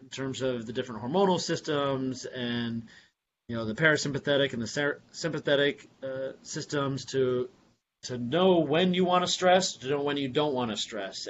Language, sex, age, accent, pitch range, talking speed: English, male, 30-49, American, 130-155 Hz, 180 wpm